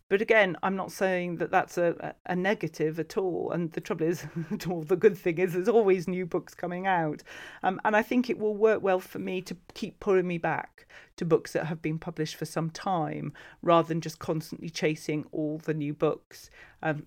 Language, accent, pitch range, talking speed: English, British, 160-220 Hz, 215 wpm